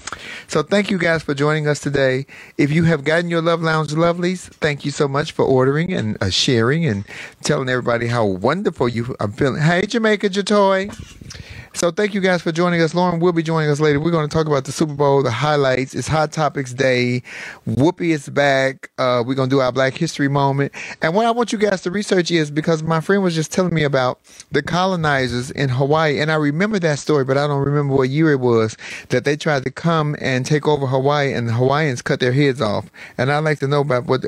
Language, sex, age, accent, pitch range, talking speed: English, male, 30-49, American, 125-165 Hz, 230 wpm